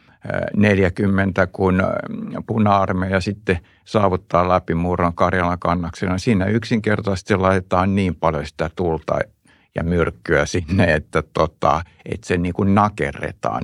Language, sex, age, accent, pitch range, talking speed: Finnish, male, 60-79, native, 95-105 Hz, 110 wpm